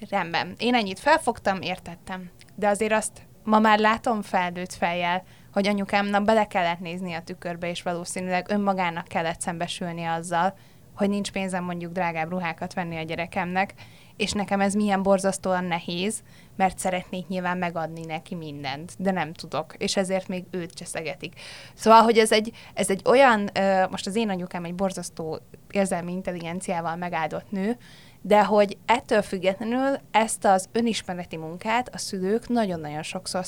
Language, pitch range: Hungarian, 175-205 Hz